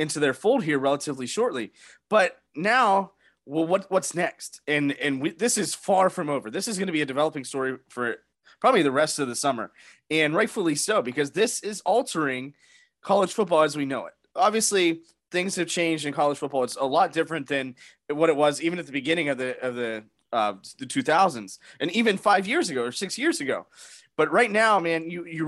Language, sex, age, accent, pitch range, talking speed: English, male, 20-39, American, 135-185 Hz, 210 wpm